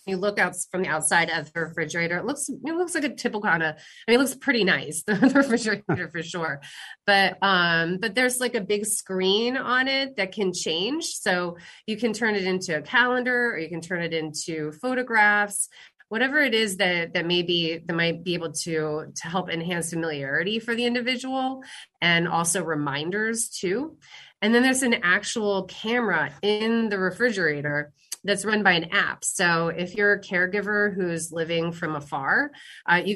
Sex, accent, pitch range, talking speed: female, American, 165-215 Hz, 185 wpm